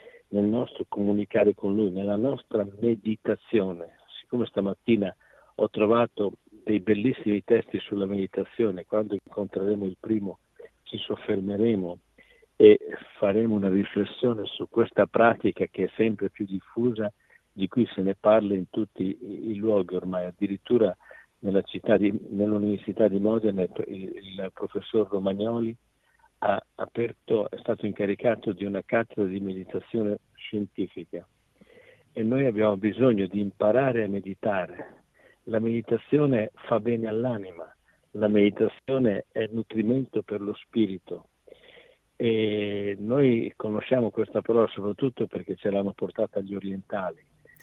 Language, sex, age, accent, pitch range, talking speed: Italian, male, 50-69, native, 100-115 Hz, 125 wpm